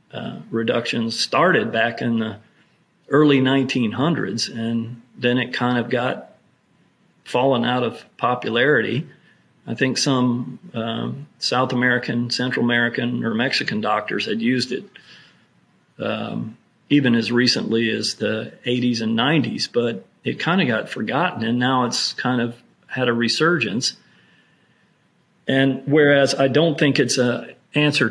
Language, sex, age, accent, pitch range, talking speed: English, male, 40-59, American, 120-140 Hz, 135 wpm